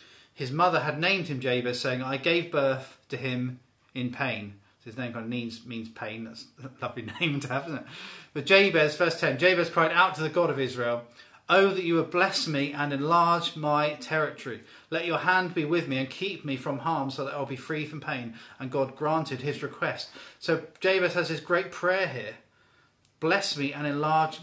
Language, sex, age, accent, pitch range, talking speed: English, male, 30-49, British, 130-160 Hz, 210 wpm